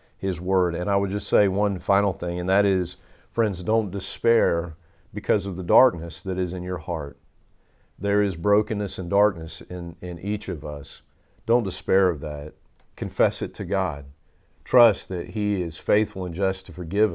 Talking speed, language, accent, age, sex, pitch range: 180 wpm, English, American, 40-59, male, 85-110 Hz